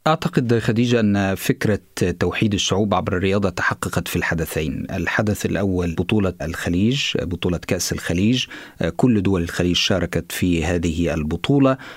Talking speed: 125 wpm